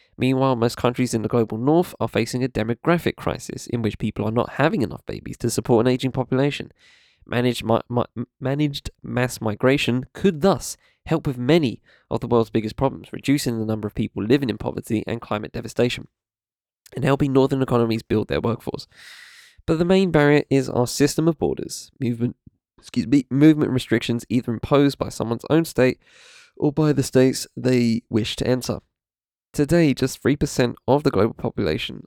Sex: male